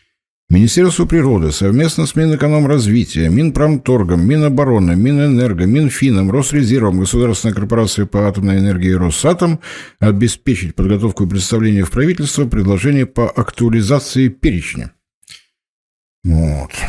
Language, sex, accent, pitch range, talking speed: Russian, male, native, 95-135 Hz, 100 wpm